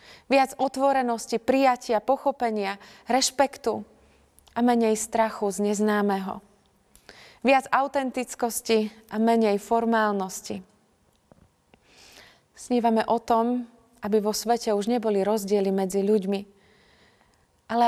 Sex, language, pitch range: female, Slovak, 210-240 Hz